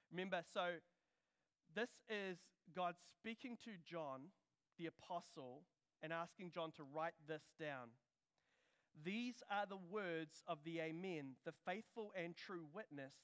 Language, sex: English, male